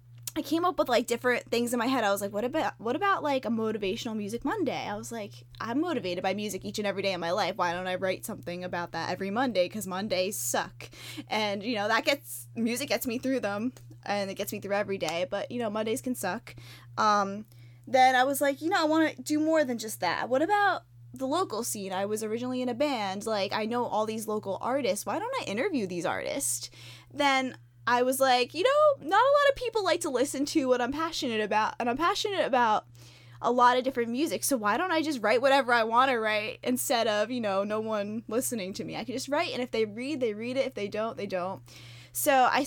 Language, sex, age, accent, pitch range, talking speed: English, female, 10-29, American, 190-260 Hz, 250 wpm